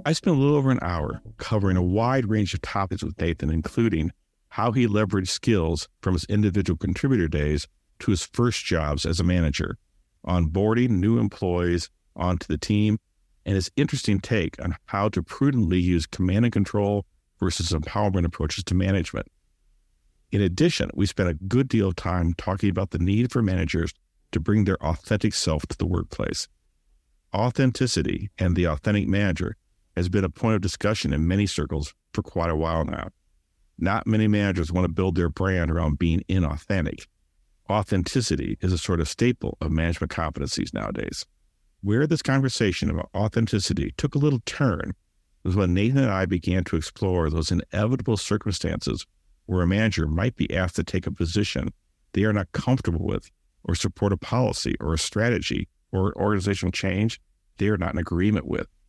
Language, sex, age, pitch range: English, male, 50-69, 85-105 Hz